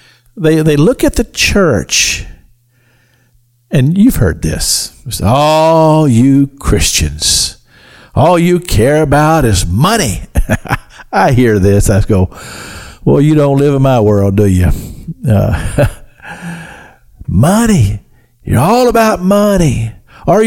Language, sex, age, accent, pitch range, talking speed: English, male, 50-69, American, 105-155 Hz, 120 wpm